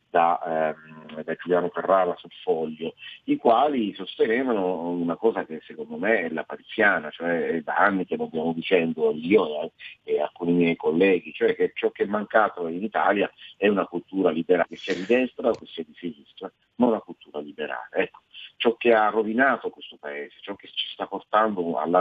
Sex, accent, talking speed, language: male, native, 175 wpm, Italian